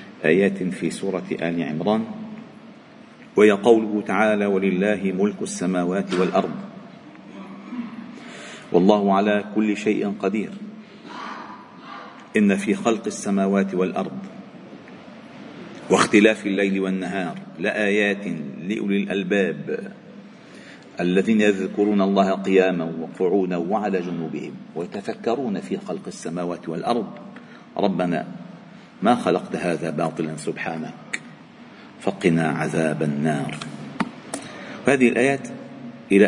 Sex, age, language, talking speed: male, 50-69, Arabic, 85 wpm